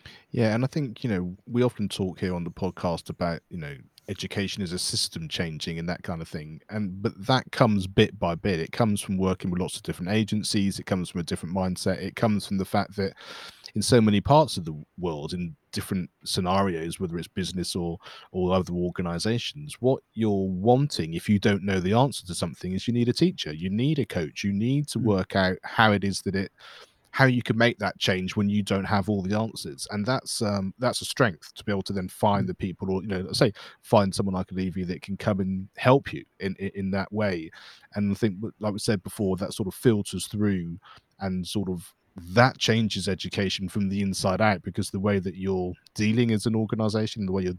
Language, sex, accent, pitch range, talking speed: English, male, British, 95-110 Hz, 230 wpm